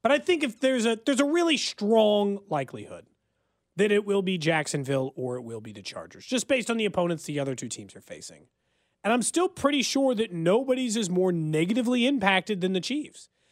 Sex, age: male, 30-49